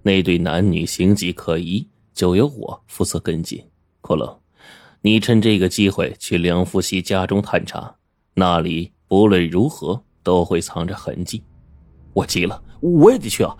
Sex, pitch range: male, 85-115 Hz